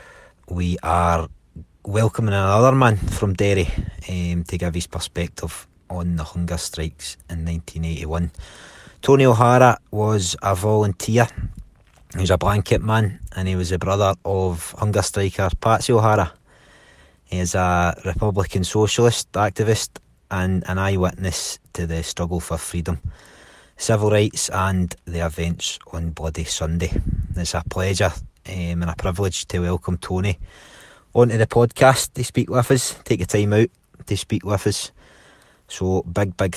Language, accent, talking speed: English, British, 145 wpm